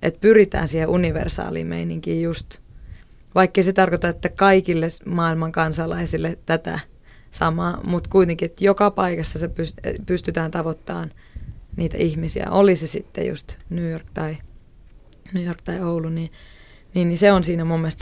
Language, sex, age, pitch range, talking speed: Finnish, female, 20-39, 160-185 Hz, 135 wpm